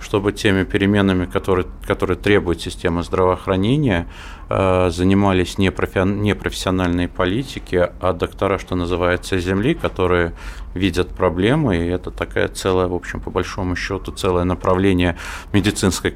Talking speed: 125 wpm